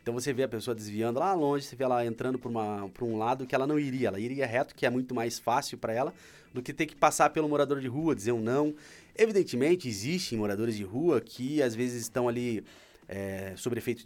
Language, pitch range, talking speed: Portuguese, 110-130 Hz, 235 wpm